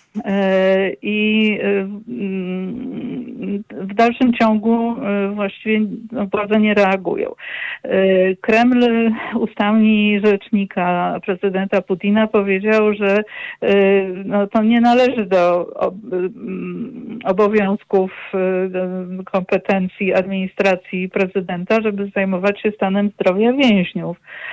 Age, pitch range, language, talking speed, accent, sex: 50-69, 190-225 Hz, Polish, 70 wpm, native, female